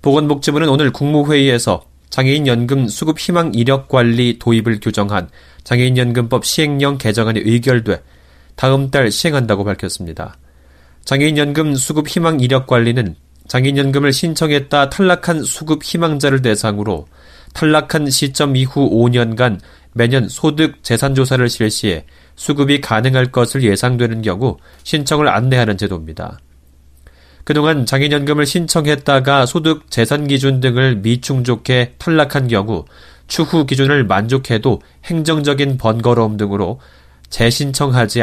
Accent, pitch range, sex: native, 105-145 Hz, male